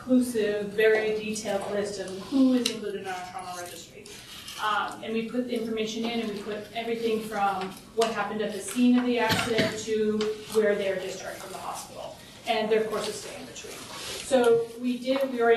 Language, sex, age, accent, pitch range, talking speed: English, female, 30-49, American, 205-245 Hz, 195 wpm